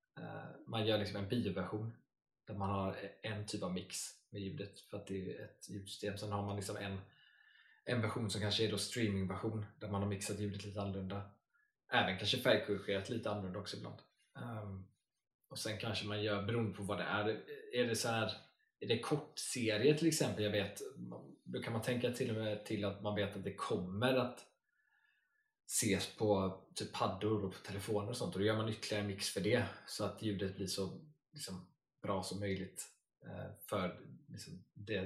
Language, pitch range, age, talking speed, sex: Swedish, 100-110 Hz, 20-39, 195 wpm, male